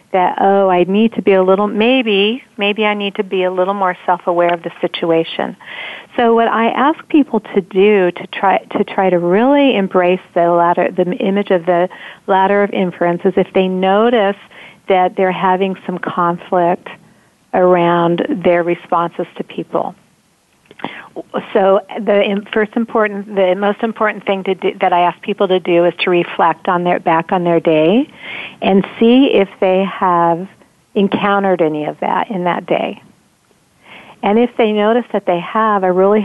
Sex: female